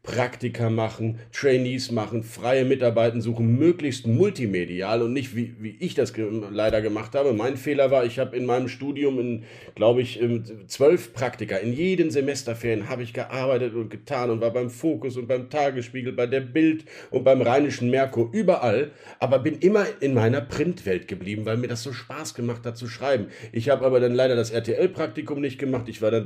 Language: German